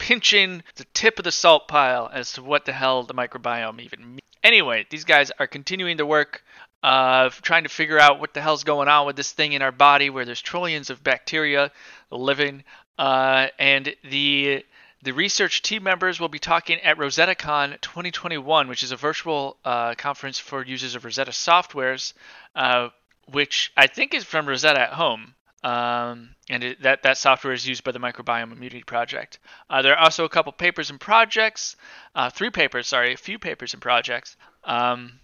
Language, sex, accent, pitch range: English, male, American, 125-155 Hz